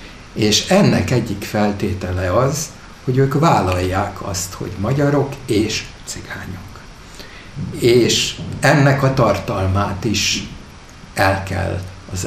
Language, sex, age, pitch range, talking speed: Hungarian, male, 60-79, 95-120 Hz, 105 wpm